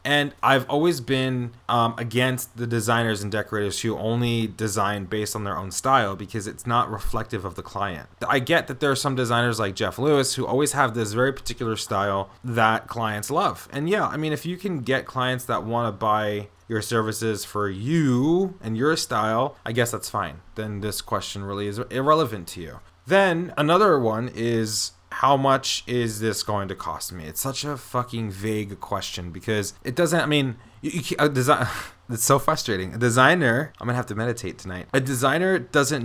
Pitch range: 105-130 Hz